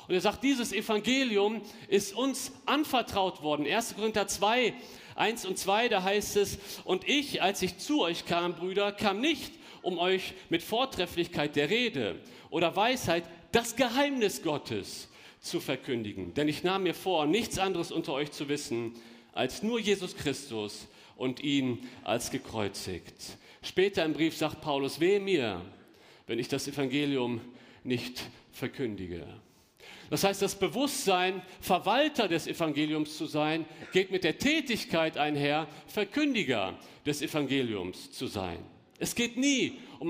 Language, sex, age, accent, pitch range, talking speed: German, male, 40-59, German, 135-200 Hz, 145 wpm